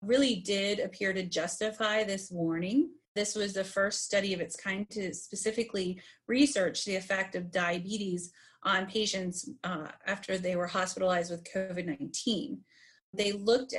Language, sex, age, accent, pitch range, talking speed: English, female, 30-49, American, 185-215 Hz, 145 wpm